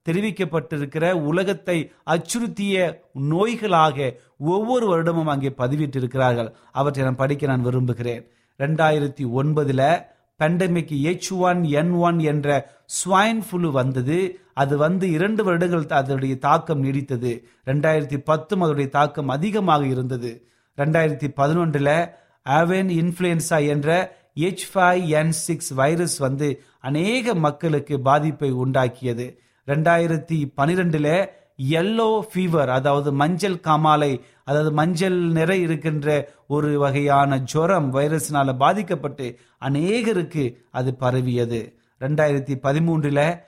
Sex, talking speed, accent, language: male, 90 wpm, native, Tamil